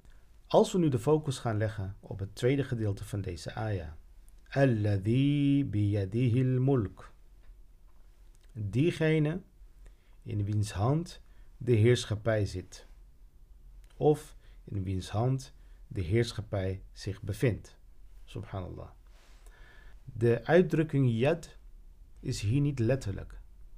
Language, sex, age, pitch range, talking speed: Dutch, male, 50-69, 100-130 Hz, 100 wpm